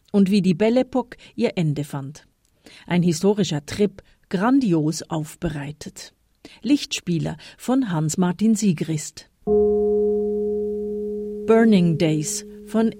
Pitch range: 155-205 Hz